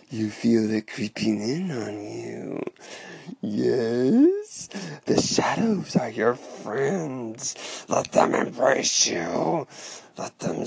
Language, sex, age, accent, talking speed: English, male, 40-59, American, 105 wpm